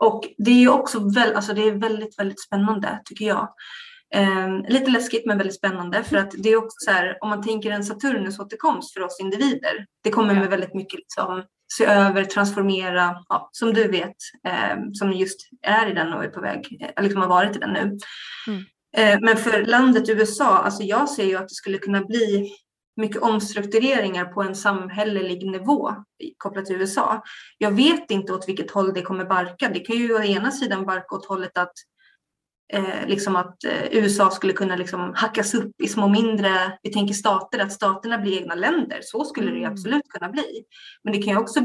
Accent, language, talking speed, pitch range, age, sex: native, Swedish, 190 wpm, 190-225 Hz, 20-39, female